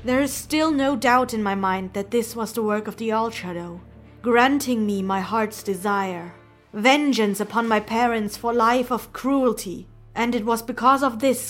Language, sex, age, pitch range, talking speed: English, female, 20-39, 205-250 Hz, 190 wpm